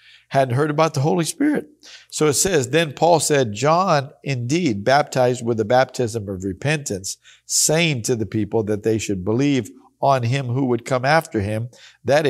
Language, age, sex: English, 50-69, male